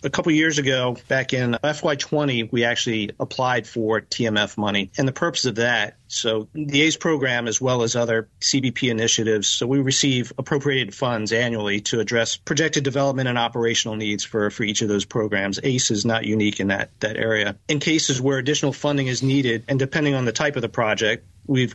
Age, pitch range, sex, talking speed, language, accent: 40-59, 110-135 Hz, male, 200 wpm, English, American